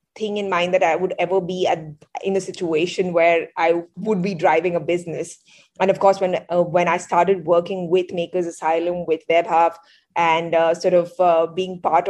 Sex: female